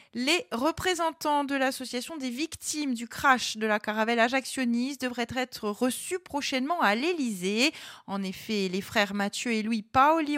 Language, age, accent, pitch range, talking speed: French, 30-49, French, 200-260 Hz, 150 wpm